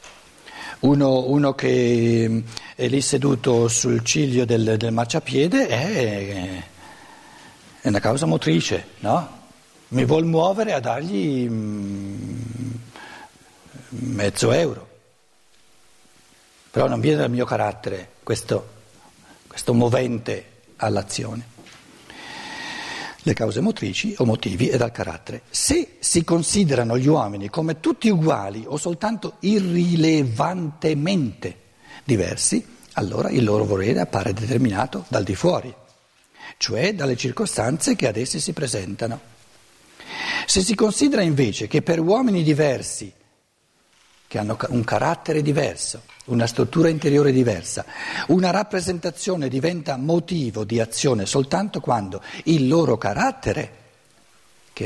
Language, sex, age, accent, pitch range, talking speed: Italian, male, 60-79, native, 110-160 Hz, 110 wpm